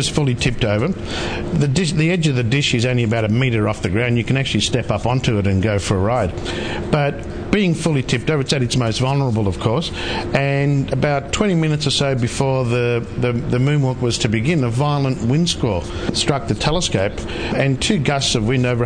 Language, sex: English, male